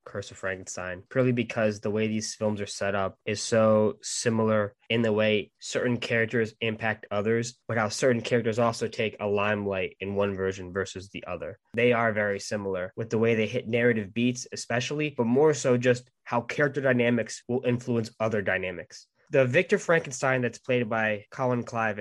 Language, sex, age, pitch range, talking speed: English, male, 10-29, 105-125 Hz, 185 wpm